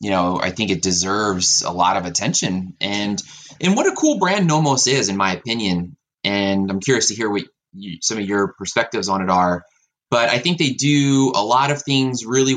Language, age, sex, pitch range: English, 20-39, male, 95-125 Hz